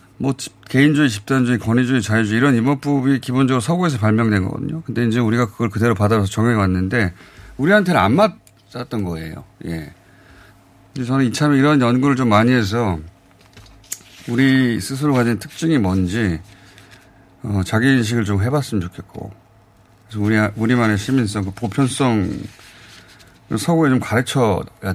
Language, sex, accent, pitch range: Korean, male, native, 100-130 Hz